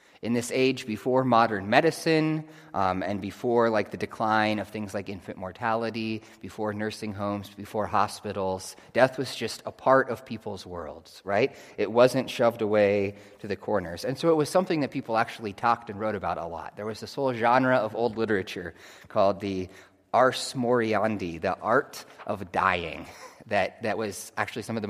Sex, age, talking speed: male, 30-49, 180 wpm